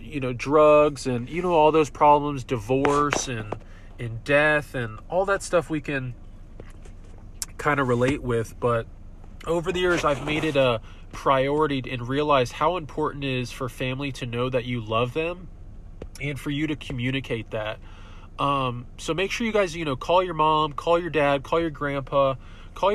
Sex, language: male, English